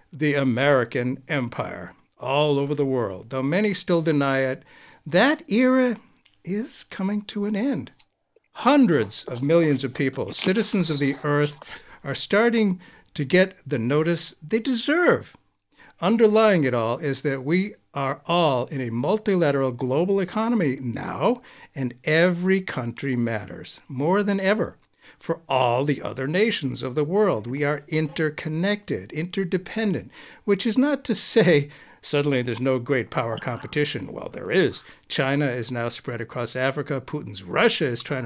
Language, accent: English, American